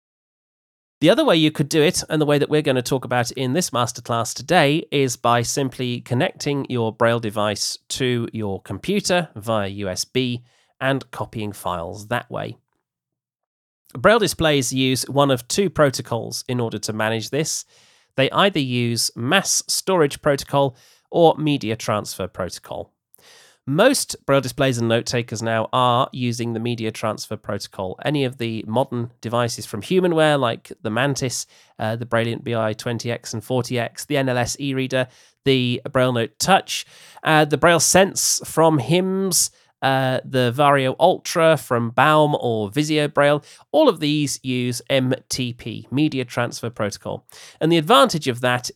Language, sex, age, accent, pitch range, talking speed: English, male, 30-49, British, 115-150 Hz, 150 wpm